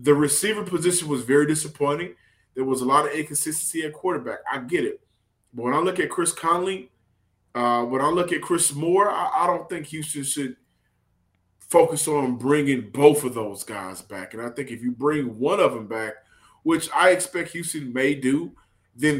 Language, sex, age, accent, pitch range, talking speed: English, male, 20-39, American, 130-160 Hz, 195 wpm